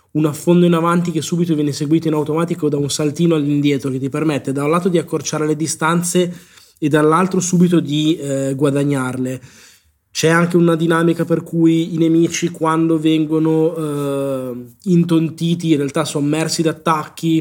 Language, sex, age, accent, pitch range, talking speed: Italian, male, 20-39, native, 145-170 Hz, 160 wpm